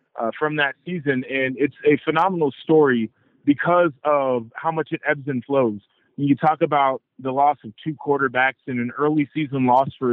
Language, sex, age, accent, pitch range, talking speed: English, male, 20-39, American, 130-160 Hz, 190 wpm